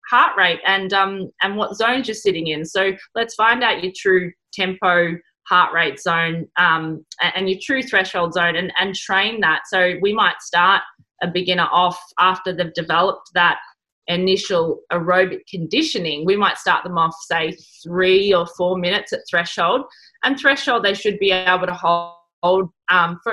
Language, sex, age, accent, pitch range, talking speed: French, female, 20-39, Australian, 170-195 Hz, 170 wpm